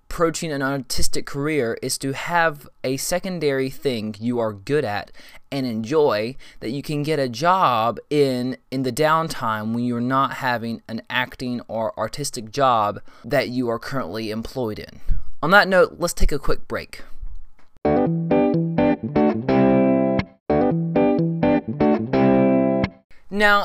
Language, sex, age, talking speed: English, male, 20-39, 125 wpm